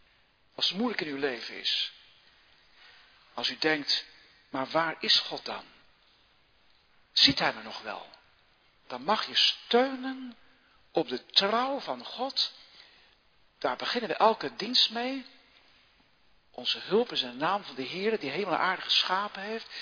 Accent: Dutch